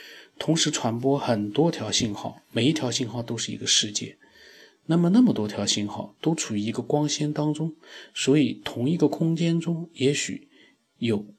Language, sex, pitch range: Chinese, male, 110-155 Hz